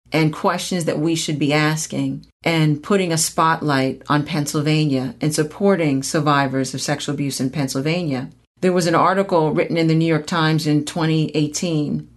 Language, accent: English, American